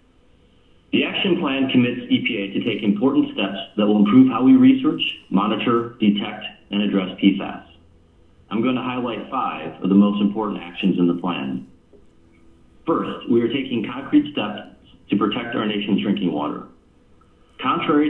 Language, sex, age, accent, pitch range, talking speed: English, male, 40-59, American, 95-125 Hz, 155 wpm